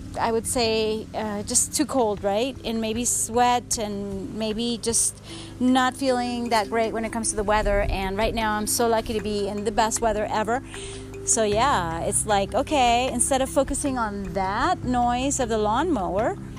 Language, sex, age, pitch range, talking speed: English, female, 30-49, 205-265 Hz, 185 wpm